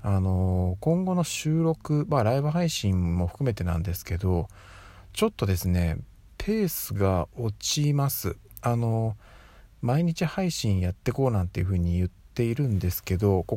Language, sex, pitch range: Japanese, male, 90-135 Hz